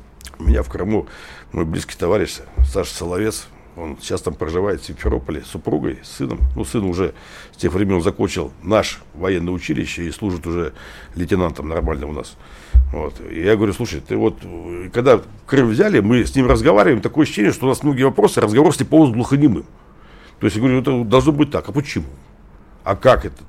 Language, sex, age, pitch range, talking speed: Russian, male, 60-79, 70-110 Hz, 195 wpm